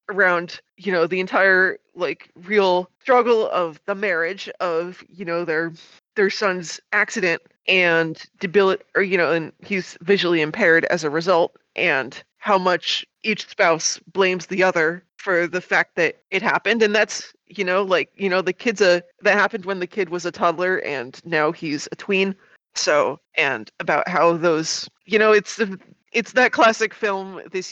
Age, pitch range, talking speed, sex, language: 20-39, 170-210 Hz, 175 wpm, female, English